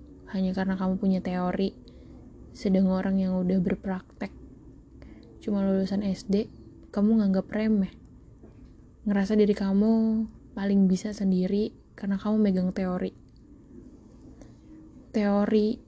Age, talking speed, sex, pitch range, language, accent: 10-29, 100 wpm, female, 195-225 Hz, Indonesian, native